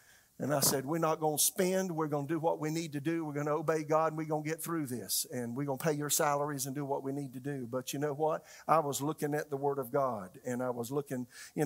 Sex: male